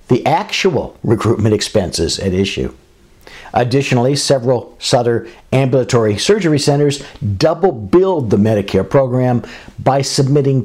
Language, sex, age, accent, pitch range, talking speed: English, male, 60-79, American, 110-140 Hz, 105 wpm